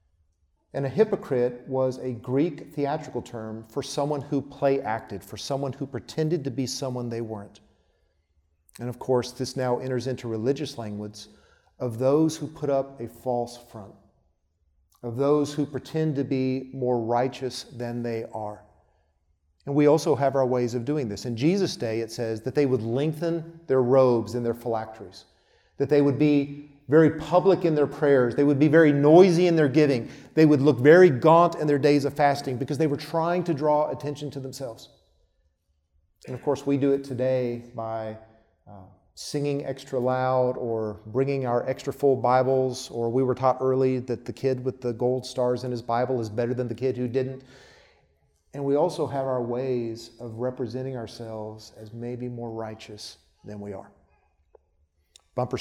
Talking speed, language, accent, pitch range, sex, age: 180 wpm, English, American, 115-140 Hz, male, 40-59